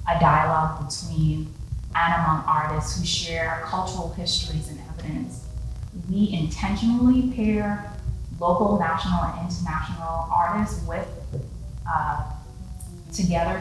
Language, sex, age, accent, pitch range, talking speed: English, female, 20-39, American, 105-180 Hz, 100 wpm